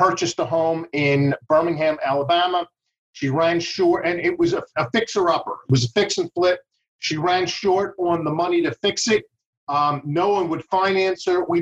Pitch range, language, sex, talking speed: 150-180 Hz, English, male, 190 wpm